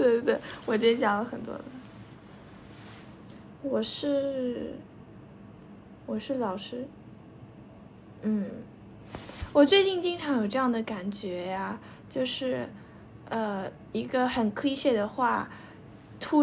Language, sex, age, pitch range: Chinese, female, 10-29, 215-275 Hz